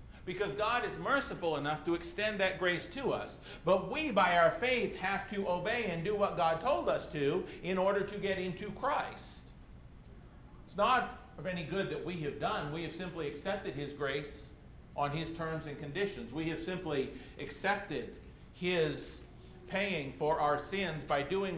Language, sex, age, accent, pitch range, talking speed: English, male, 50-69, American, 150-195 Hz, 175 wpm